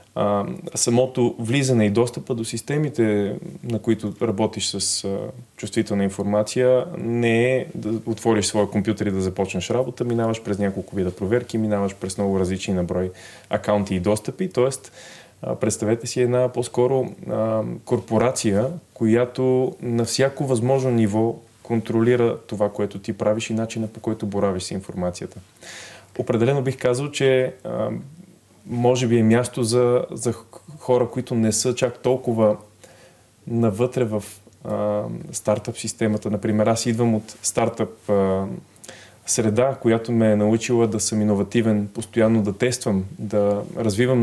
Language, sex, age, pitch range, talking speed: Bulgarian, male, 20-39, 105-120 Hz, 135 wpm